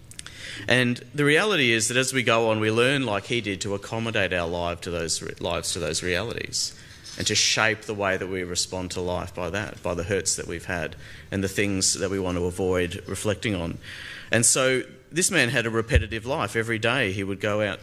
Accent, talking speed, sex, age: Australian, 225 wpm, male, 30-49